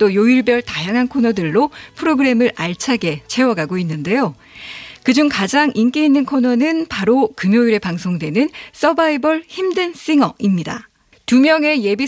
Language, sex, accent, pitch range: Korean, female, native, 205-275 Hz